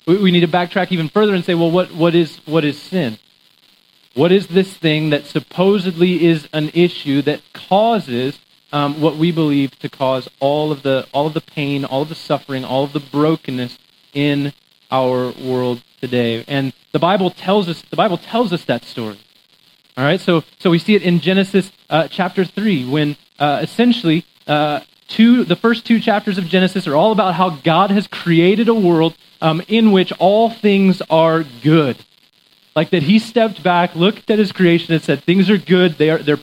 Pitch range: 150-195 Hz